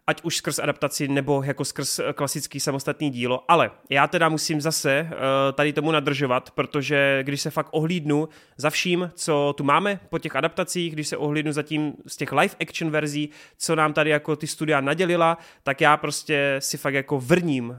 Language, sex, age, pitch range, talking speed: Czech, male, 30-49, 145-170 Hz, 180 wpm